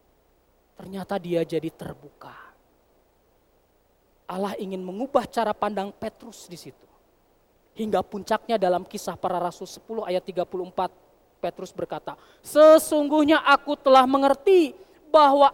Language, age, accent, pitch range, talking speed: Indonesian, 20-39, native, 210-290 Hz, 110 wpm